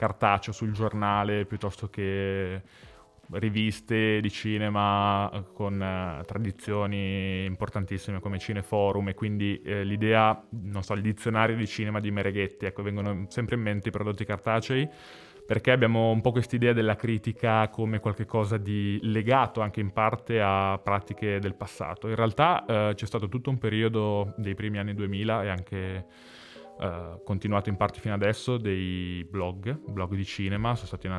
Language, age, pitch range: Italian, 20-39, 95-110 Hz